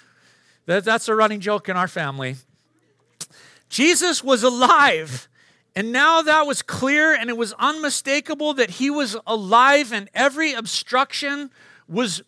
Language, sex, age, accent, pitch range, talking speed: English, male, 40-59, American, 200-285 Hz, 130 wpm